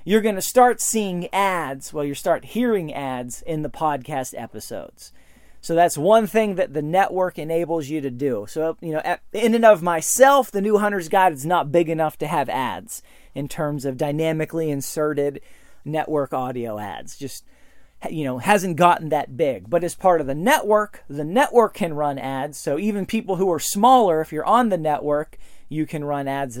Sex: male